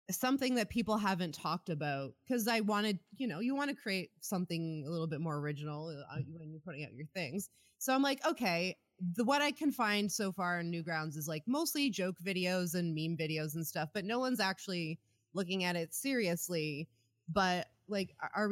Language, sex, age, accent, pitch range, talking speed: English, female, 20-39, American, 165-210 Hz, 200 wpm